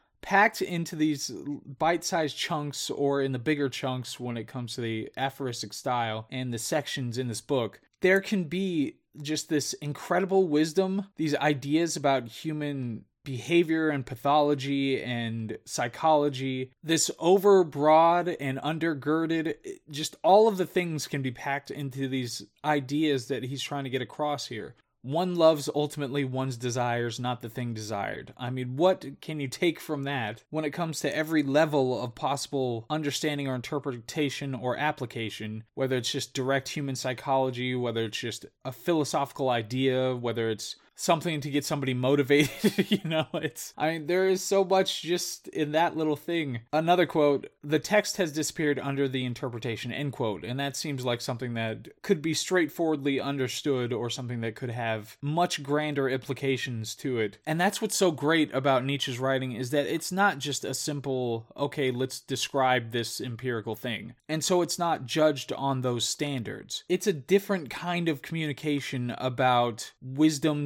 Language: English